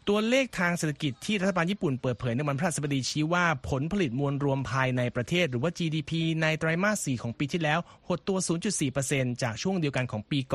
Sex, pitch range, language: male, 125-170 Hz, Thai